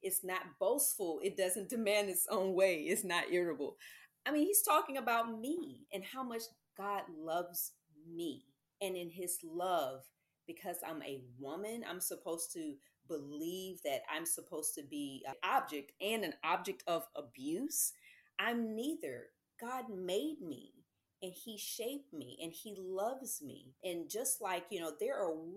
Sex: female